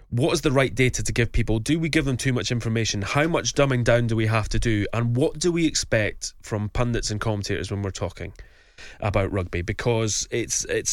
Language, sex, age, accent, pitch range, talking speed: English, male, 20-39, British, 110-135 Hz, 225 wpm